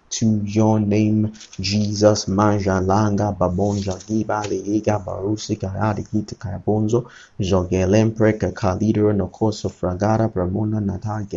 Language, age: English, 30-49